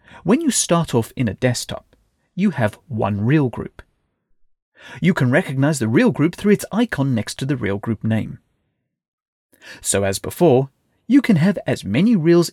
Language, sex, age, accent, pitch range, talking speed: English, male, 30-49, British, 115-170 Hz, 170 wpm